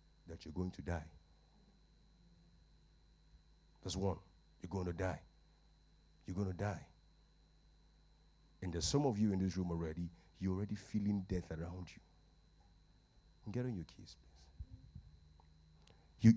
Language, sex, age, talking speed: English, male, 50-69, 130 wpm